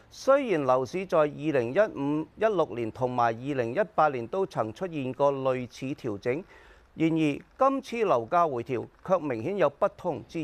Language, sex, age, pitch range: Chinese, male, 40-59, 120-185 Hz